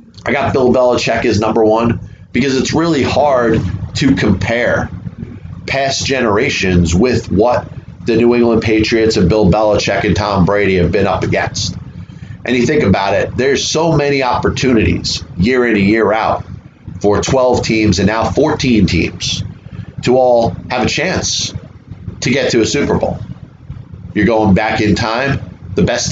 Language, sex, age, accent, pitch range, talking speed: English, male, 30-49, American, 105-130 Hz, 160 wpm